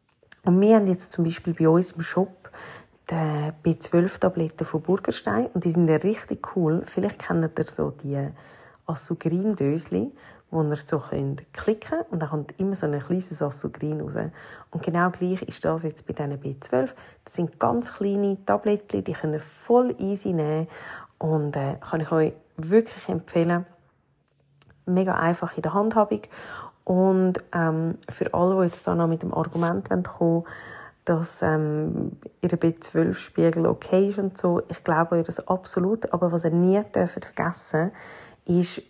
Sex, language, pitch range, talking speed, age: female, German, 160-185 Hz, 165 wpm, 30-49